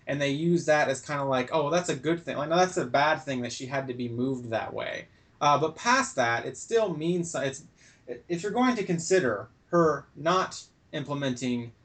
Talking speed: 225 wpm